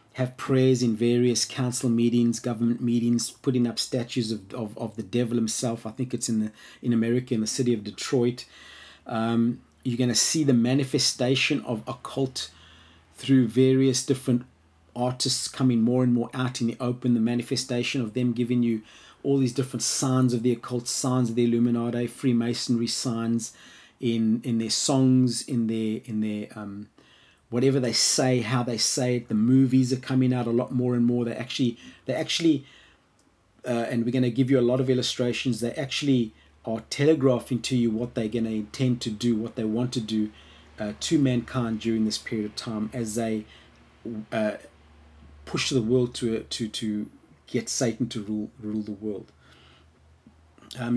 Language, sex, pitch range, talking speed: English, male, 110-130 Hz, 180 wpm